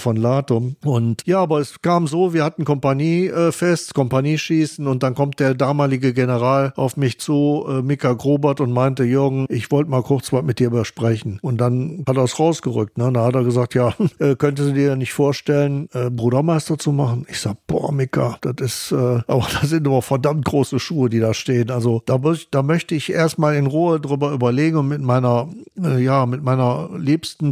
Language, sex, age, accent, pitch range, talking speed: German, male, 60-79, German, 125-150 Hz, 210 wpm